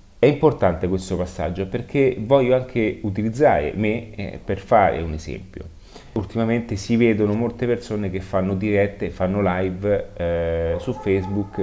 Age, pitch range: 30-49, 90-115 Hz